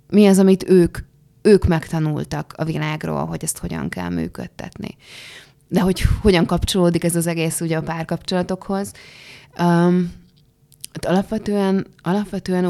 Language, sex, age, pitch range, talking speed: Hungarian, female, 20-39, 145-175 Hz, 125 wpm